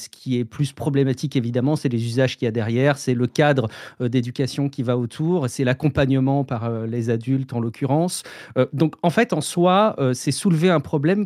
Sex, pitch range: male, 125-160 Hz